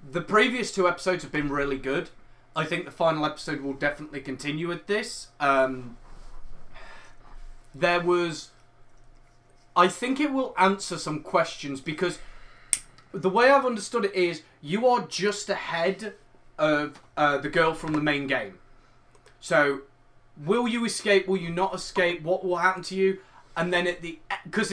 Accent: British